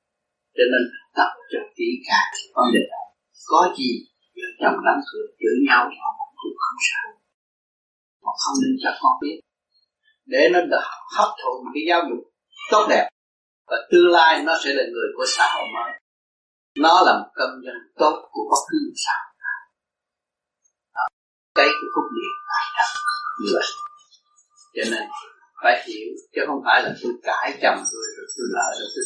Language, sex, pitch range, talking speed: Vietnamese, male, 325-435 Hz, 160 wpm